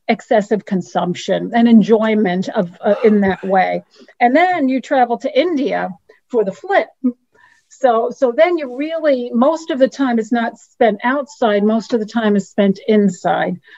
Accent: American